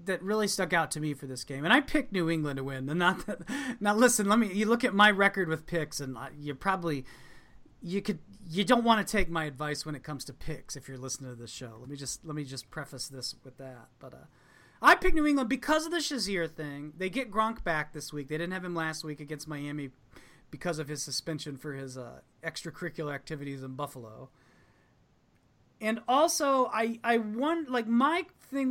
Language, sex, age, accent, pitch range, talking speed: English, male, 30-49, American, 145-200 Hz, 215 wpm